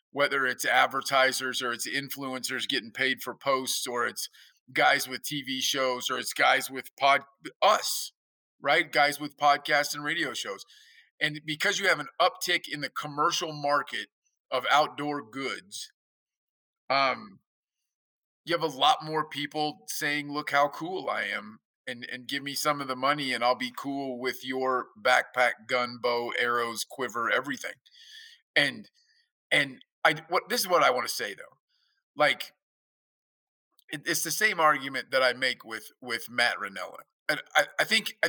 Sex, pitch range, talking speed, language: male, 130-160 Hz, 165 wpm, English